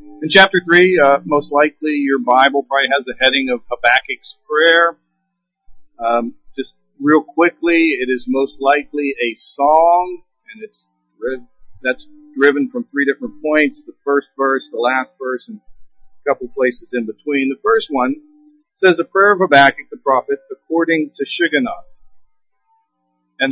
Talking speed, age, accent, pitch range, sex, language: 150 wpm, 50-69, American, 130-190 Hz, male, English